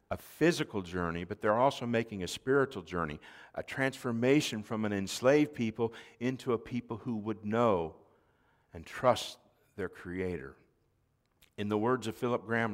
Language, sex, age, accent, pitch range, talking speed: English, male, 50-69, American, 90-120 Hz, 150 wpm